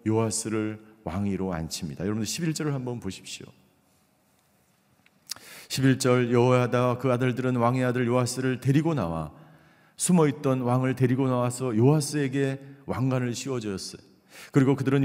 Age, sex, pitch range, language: 40-59, male, 130-175 Hz, Korean